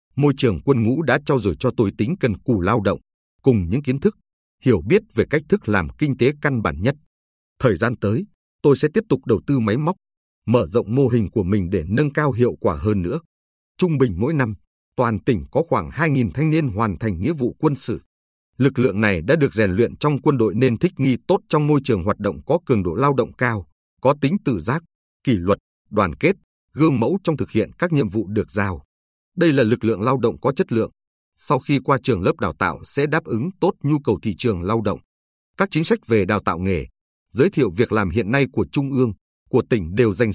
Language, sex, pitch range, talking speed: Vietnamese, male, 100-140 Hz, 235 wpm